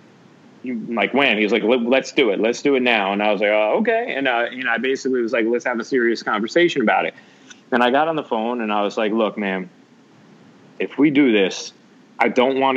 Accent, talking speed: American, 245 wpm